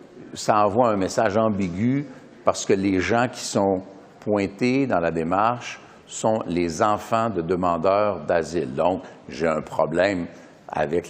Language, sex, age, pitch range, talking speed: French, male, 60-79, 95-130 Hz, 140 wpm